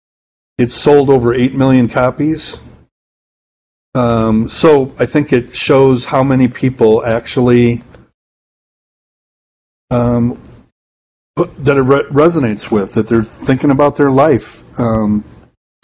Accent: American